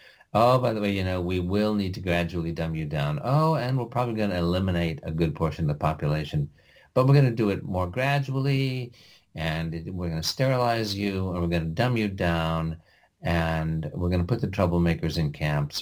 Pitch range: 80-105 Hz